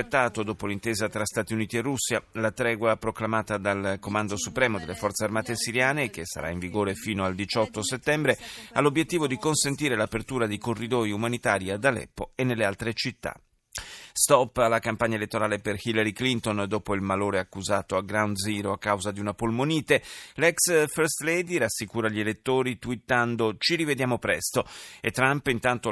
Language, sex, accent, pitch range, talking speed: Italian, male, native, 105-135 Hz, 165 wpm